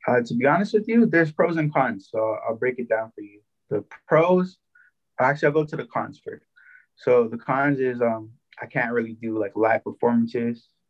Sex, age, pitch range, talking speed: male, 20-39, 110-130 Hz, 210 wpm